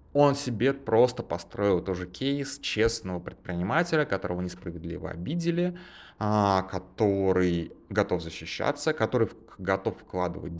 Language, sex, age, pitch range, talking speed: Russian, male, 20-39, 90-115 Hz, 95 wpm